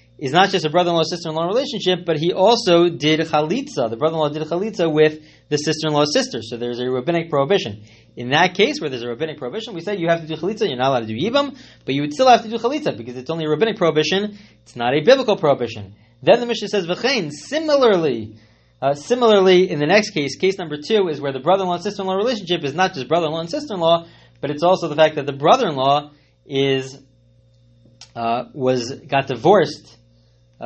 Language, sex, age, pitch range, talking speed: English, male, 30-49, 125-170 Hz, 210 wpm